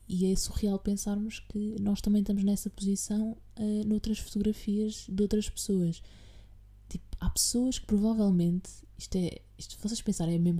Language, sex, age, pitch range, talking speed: Portuguese, female, 20-39, 150-195 Hz, 160 wpm